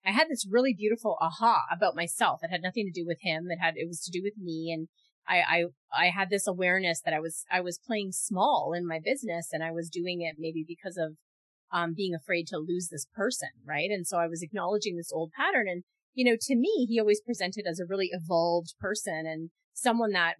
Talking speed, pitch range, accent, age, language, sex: 235 wpm, 170-210 Hz, American, 30-49, English, female